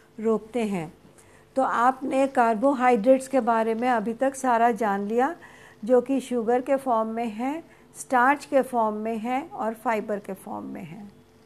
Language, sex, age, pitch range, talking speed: Hindi, female, 50-69, 235-275 Hz, 160 wpm